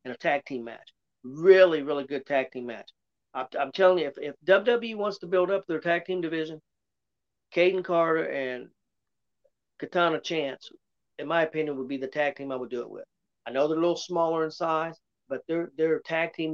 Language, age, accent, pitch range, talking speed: English, 40-59, American, 135-165 Hz, 205 wpm